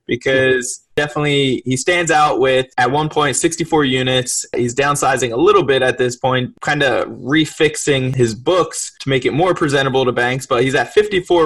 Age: 20-39